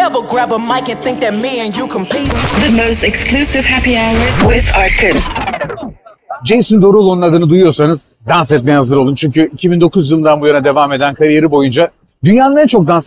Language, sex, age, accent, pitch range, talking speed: Turkish, male, 40-59, native, 155-215 Hz, 180 wpm